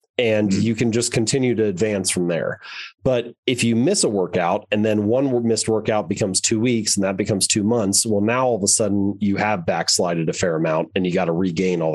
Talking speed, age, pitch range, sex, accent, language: 230 wpm, 30-49, 100-120 Hz, male, American, English